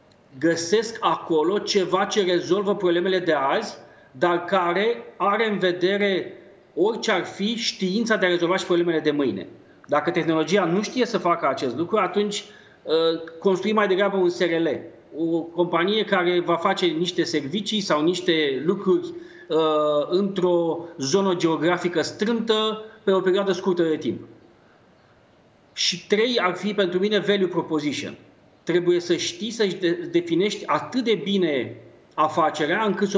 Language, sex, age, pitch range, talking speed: Romanian, male, 30-49, 170-205 Hz, 140 wpm